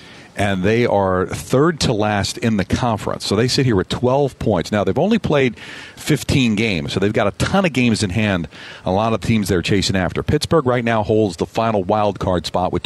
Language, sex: English, male